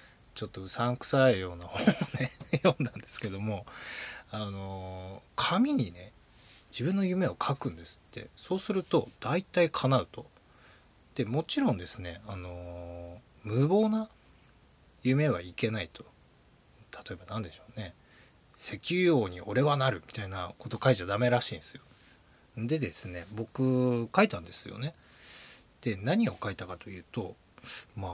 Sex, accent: male, native